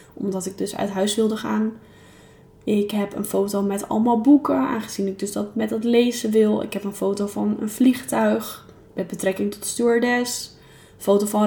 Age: 10-29